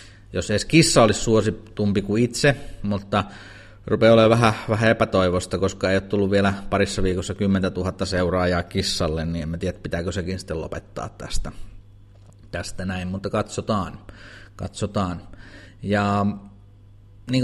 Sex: male